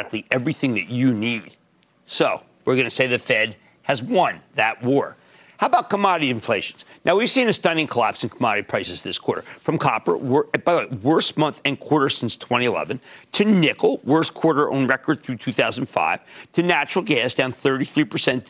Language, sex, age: English, male, 50-69